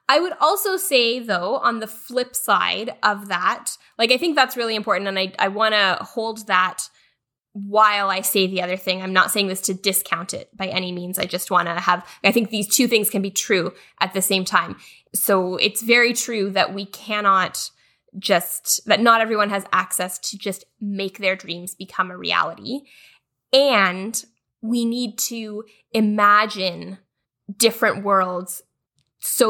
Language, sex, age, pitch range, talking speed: English, female, 10-29, 185-225 Hz, 175 wpm